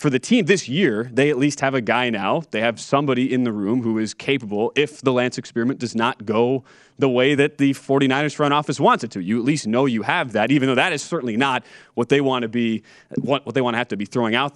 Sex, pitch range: male, 115-145 Hz